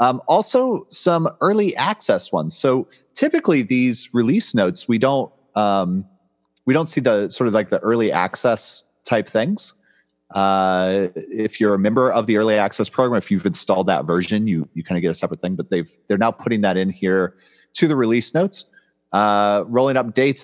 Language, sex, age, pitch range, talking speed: English, male, 30-49, 85-120 Hz, 190 wpm